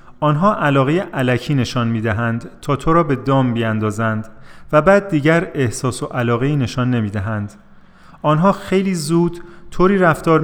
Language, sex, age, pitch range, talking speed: Persian, male, 30-49, 115-150 Hz, 145 wpm